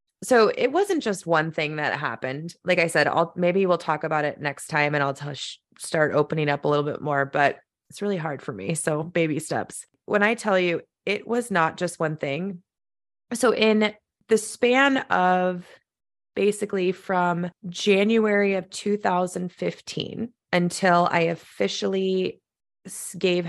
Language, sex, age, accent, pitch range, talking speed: English, female, 20-39, American, 160-205 Hz, 160 wpm